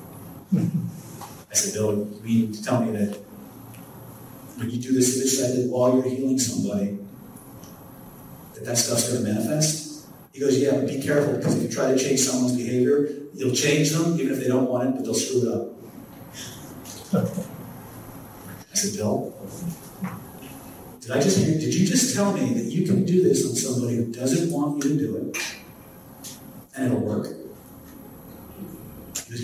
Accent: American